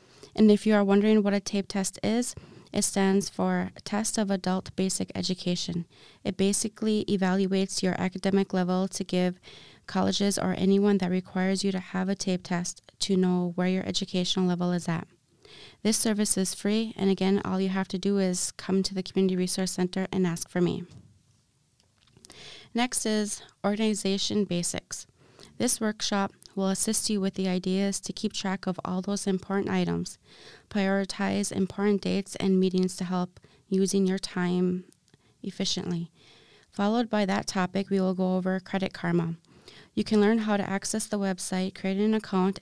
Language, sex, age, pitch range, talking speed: English, female, 20-39, 185-205 Hz, 170 wpm